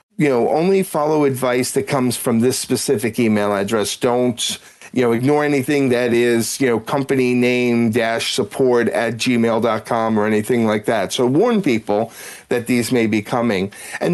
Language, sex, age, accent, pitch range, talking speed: English, male, 40-59, American, 110-140 Hz, 180 wpm